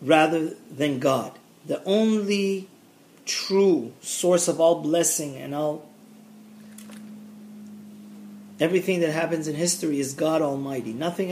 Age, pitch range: 40-59, 150-200 Hz